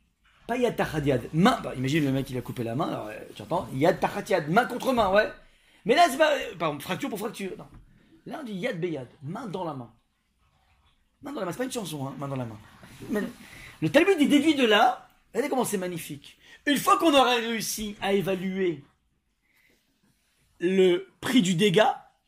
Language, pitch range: French, 130-205 Hz